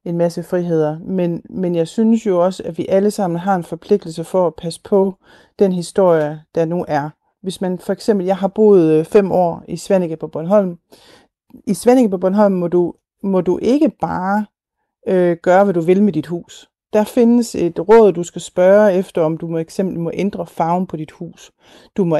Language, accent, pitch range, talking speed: Danish, native, 170-210 Hz, 205 wpm